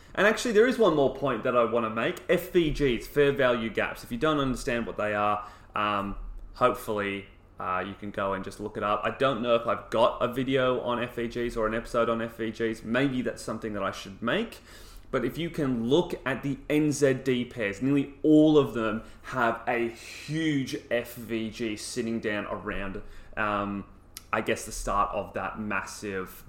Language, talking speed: English, 190 wpm